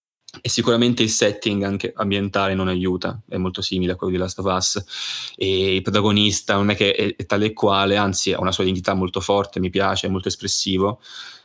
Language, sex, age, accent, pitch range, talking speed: Italian, male, 20-39, native, 95-105 Hz, 205 wpm